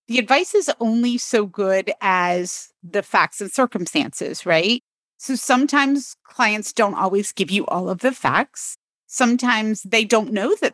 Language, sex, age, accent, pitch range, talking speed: English, female, 30-49, American, 190-235 Hz, 155 wpm